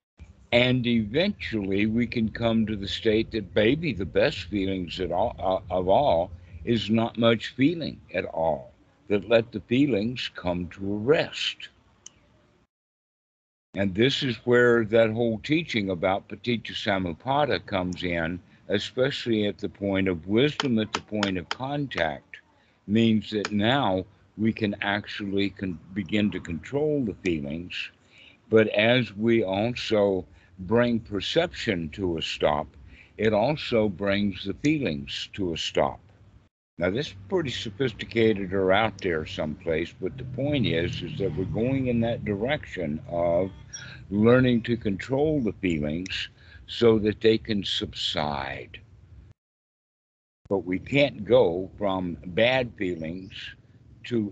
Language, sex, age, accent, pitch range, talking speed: English, male, 60-79, American, 95-115 Hz, 135 wpm